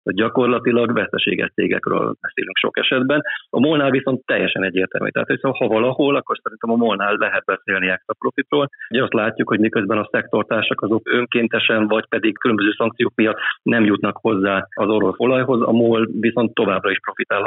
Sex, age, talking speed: male, 30-49, 170 wpm